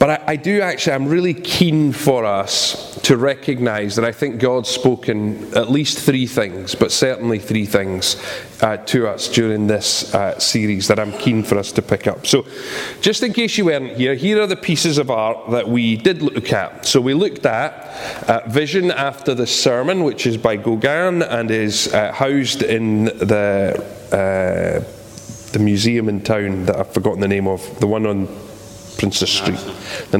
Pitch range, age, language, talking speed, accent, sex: 105-140 Hz, 30-49, English, 185 wpm, British, male